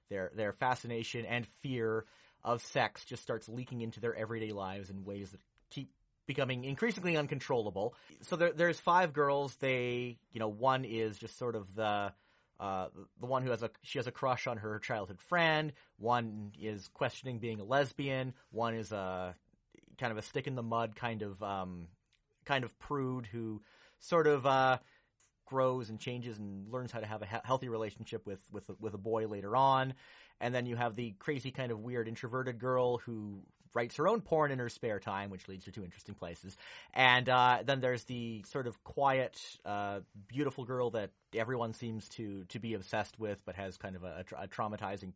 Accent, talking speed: American, 195 wpm